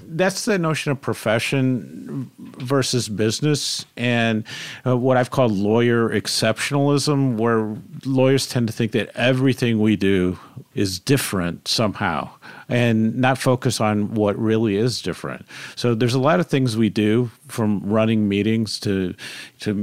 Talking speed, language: 140 wpm, English